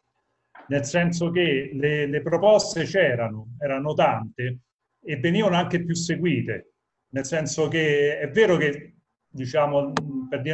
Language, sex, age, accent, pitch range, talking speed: Italian, male, 40-59, native, 140-175 Hz, 130 wpm